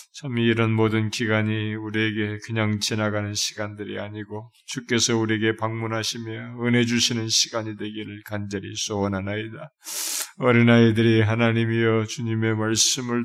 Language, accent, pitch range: Korean, native, 110-120 Hz